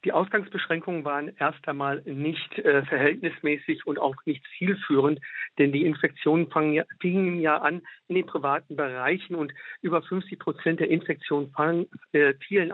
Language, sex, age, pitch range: German, male, 50-69, 150-180 Hz